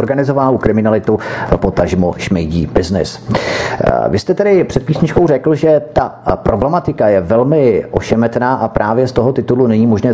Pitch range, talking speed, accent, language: 95-130 Hz, 140 wpm, native, Czech